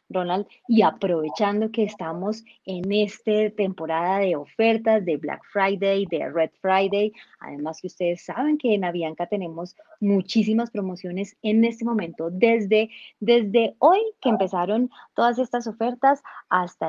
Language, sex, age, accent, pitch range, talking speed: Spanish, female, 30-49, Colombian, 180-225 Hz, 135 wpm